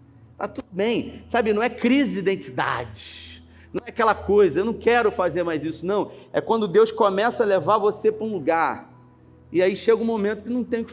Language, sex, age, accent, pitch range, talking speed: Portuguese, male, 40-59, Brazilian, 165-230 Hz, 220 wpm